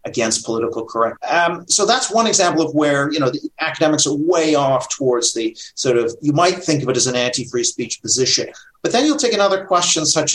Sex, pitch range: male, 125-160 Hz